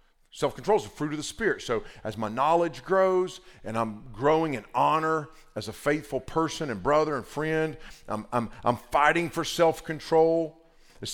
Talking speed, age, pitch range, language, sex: 165 wpm, 40-59, 140-165 Hz, English, male